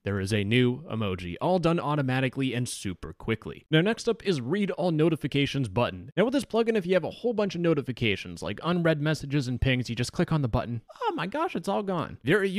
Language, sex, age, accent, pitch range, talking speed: English, male, 20-39, American, 120-175 Hz, 235 wpm